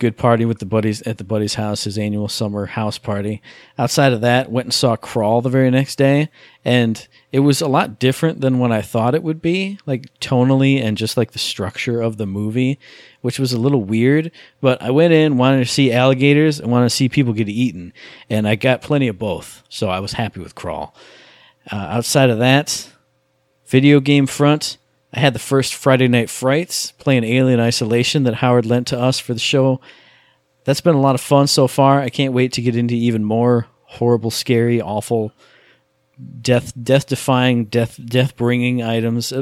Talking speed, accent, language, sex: 200 wpm, American, English, male